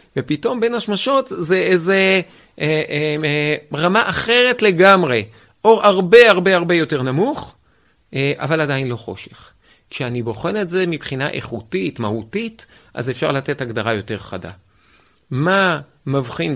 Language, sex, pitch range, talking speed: Hebrew, male, 125-175 Hz, 120 wpm